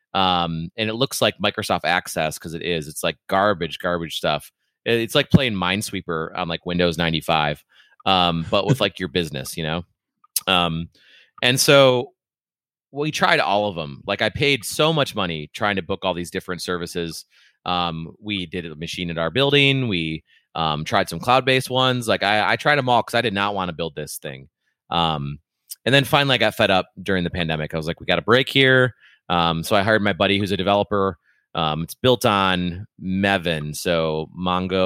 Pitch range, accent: 85-120 Hz, American